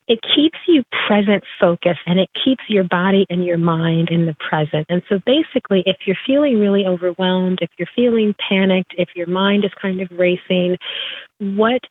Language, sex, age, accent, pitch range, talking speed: English, female, 30-49, American, 180-220 Hz, 180 wpm